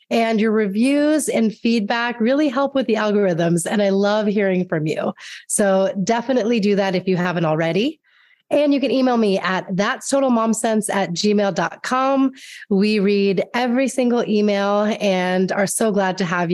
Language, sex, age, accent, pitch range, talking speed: English, female, 30-49, American, 185-230 Hz, 160 wpm